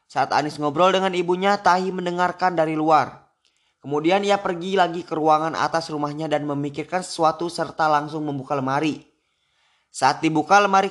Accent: native